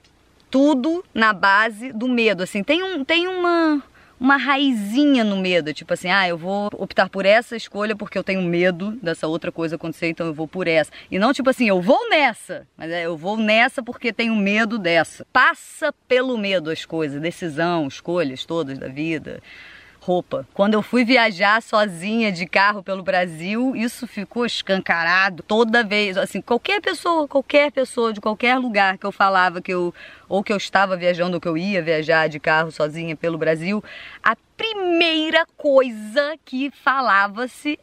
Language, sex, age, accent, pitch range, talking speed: Portuguese, female, 20-39, Brazilian, 180-255 Hz, 170 wpm